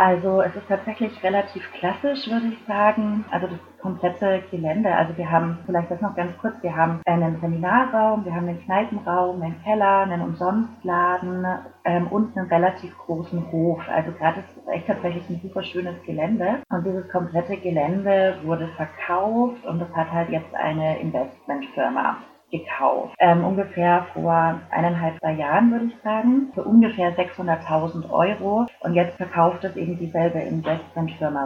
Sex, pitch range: female, 165-195 Hz